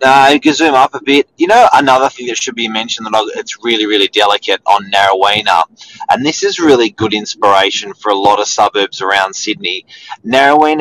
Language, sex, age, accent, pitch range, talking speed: English, male, 30-49, Australian, 100-155 Hz, 200 wpm